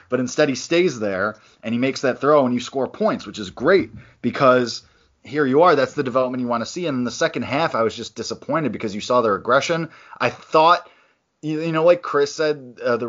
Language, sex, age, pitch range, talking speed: English, male, 20-39, 110-140 Hz, 235 wpm